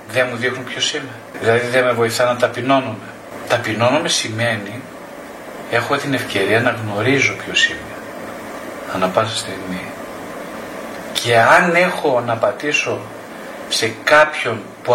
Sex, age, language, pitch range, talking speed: male, 40-59, Greek, 120-155 Hz, 125 wpm